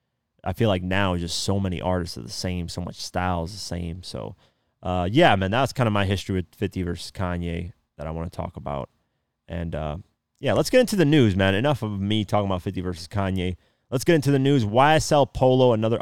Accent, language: American, English